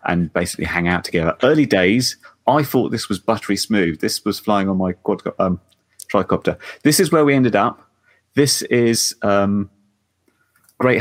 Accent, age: British, 30-49